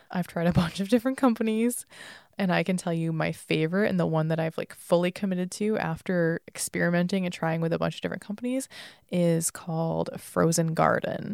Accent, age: American, 20-39